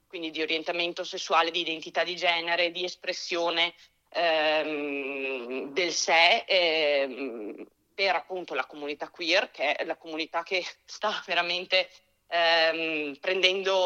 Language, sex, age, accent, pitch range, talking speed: Italian, female, 30-49, native, 165-195 Hz, 120 wpm